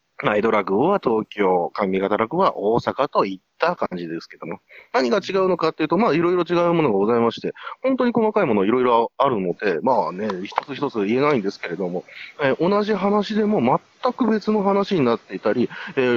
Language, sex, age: Japanese, male, 30-49